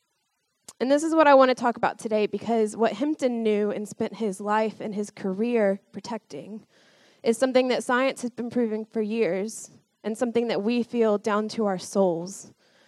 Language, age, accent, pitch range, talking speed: English, 20-39, American, 200-240 Hz, 185 wpm